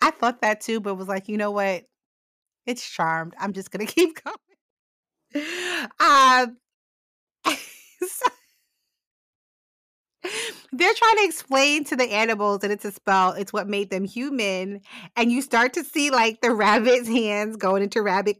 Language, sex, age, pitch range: English, female, 30-49, 195-270 Hz